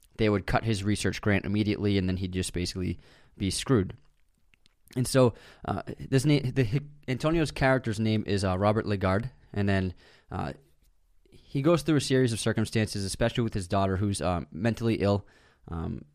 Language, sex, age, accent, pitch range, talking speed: English, male, 20-39, American, 95-125 Hz, 170 wpm